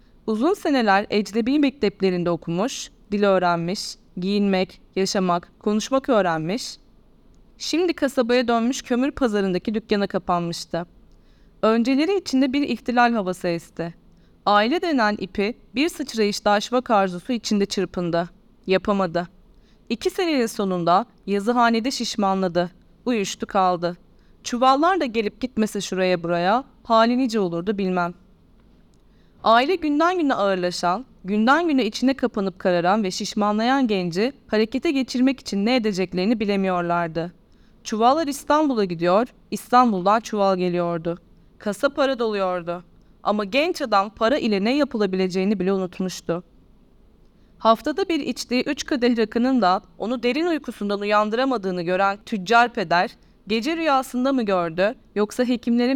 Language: Turkish